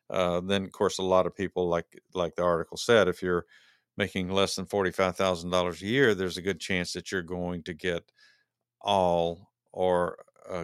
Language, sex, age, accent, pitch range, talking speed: English, male, 50-69, American, 90-120 Hz, 205 wpm